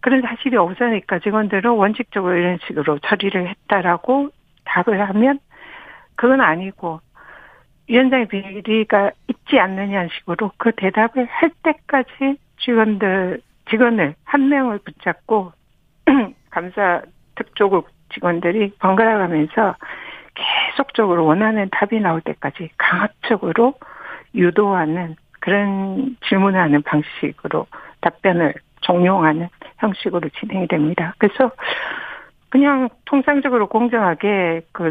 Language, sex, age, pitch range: Korean, female, 60-79, 175-235 Hz